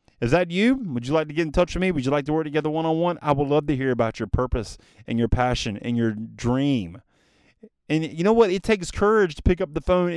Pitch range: 120-165 Hz